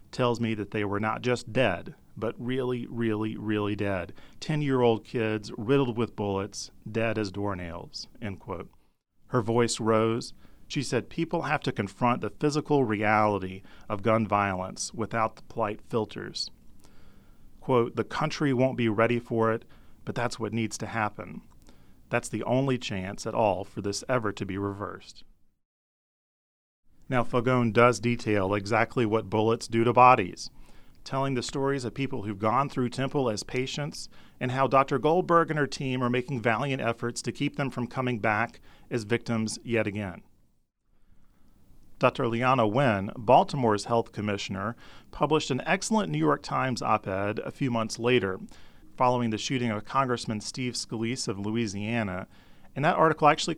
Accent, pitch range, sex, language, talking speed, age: American, 110-130 Hz, male, English, 155 wpm, 40-59